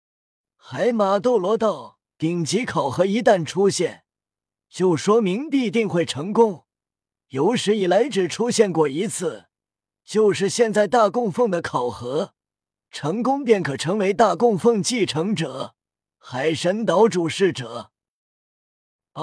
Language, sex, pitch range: Chinese, male, 150-220 Hz